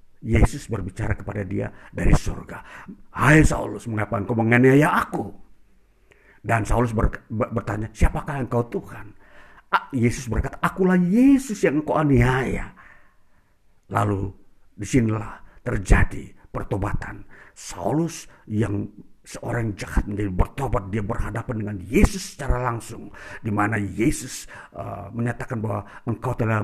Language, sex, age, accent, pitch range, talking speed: Indonesian, male, 50-69, native, 105-135 Hz, 115 wpm